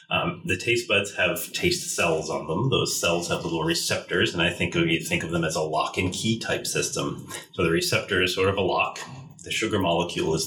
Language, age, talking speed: English, 30-49, 230 wpm